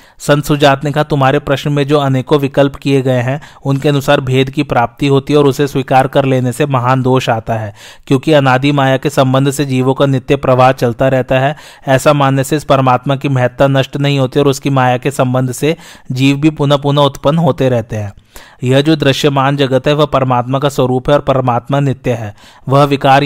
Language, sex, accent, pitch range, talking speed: Hindi, male, native, 130-145 Hz, 205 wpm